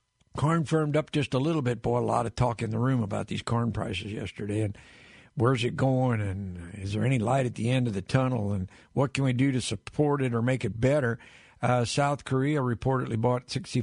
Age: 60-79